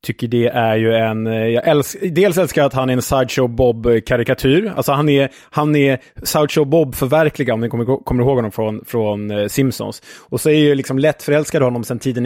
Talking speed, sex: 200 wpm, male